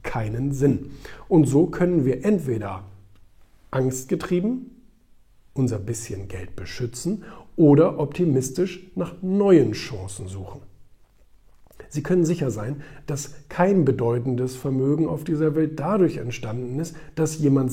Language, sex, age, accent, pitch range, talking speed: German, male, 50-69, German, 115-155 Hz, 115 wpm